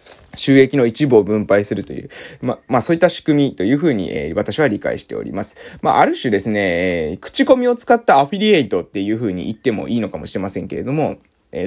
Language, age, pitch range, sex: Japanese, 20-39, 130-190 Hz, male